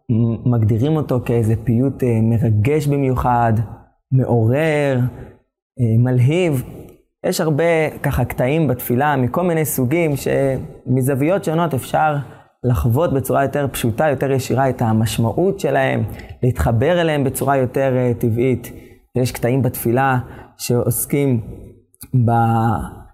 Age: 20-39